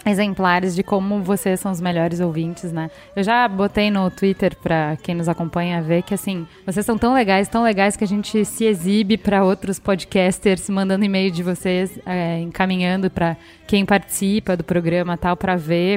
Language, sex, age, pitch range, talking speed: Portuguese, female, 10-29, 185-215 Hz, 190 wpm